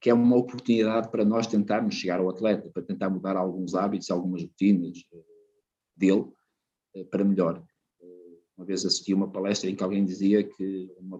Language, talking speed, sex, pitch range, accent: Portuguese, 170 wpm, male, 95-120 Hz, Portuguese